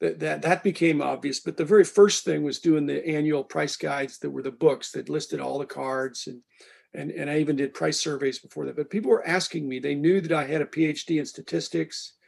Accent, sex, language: American, male, English